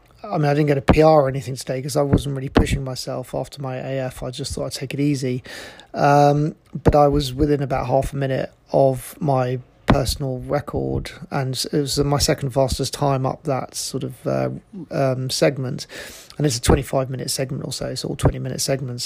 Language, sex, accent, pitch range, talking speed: English, male, British, 135-155 Hz, 200 wpm